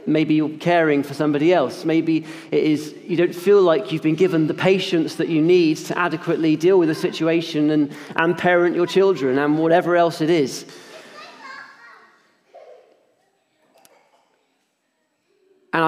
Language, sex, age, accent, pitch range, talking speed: English, male, 40-59, British, 155-195 Hz, 145 wpm